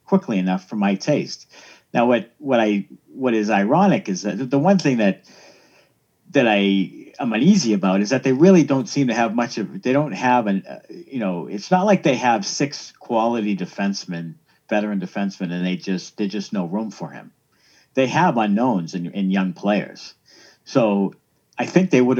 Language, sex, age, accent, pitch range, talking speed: English, male, 50-69, American, 110-160 Hz, 195 wpm